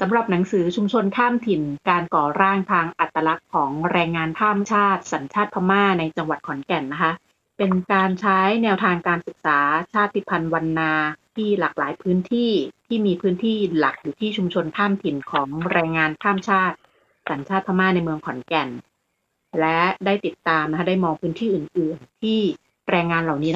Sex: female